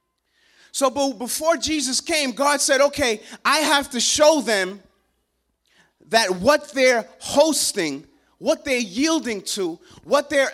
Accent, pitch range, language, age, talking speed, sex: American, 230-300 Hz, English, 30-49, 125 wpm, male